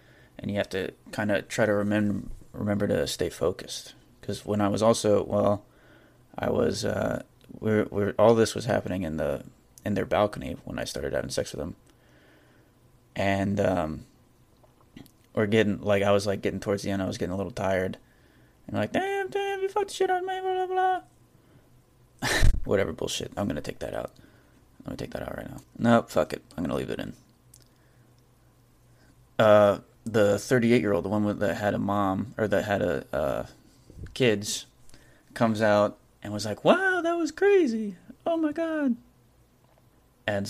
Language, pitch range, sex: English, 105-125 Hz, male